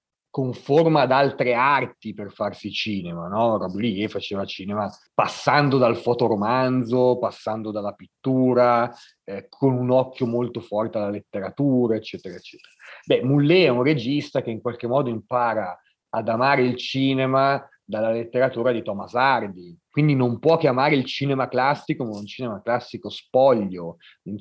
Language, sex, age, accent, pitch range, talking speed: Italian, male, 30-49, native, 105-130 Hz, 150 wpm